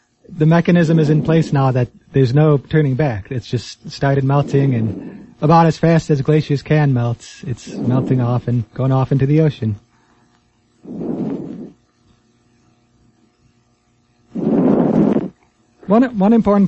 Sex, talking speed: male, 125 wpm